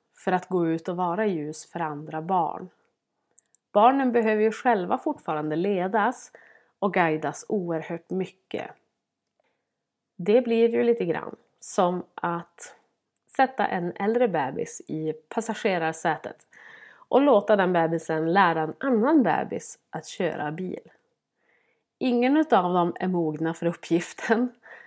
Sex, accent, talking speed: female, native, 125 wpm